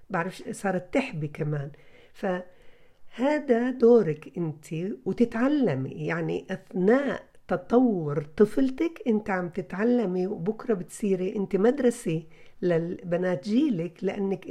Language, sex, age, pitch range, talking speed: Arabic, female, 50-69, 175-220 Hz, 95 wpm